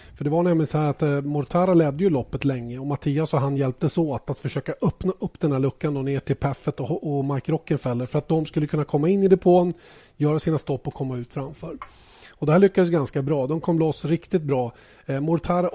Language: Swedish